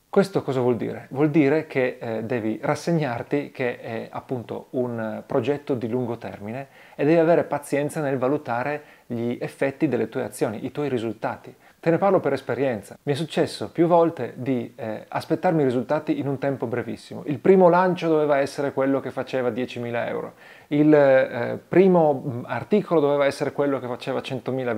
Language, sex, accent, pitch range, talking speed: Italian, male, native, 125-155 Hz, 170 wpm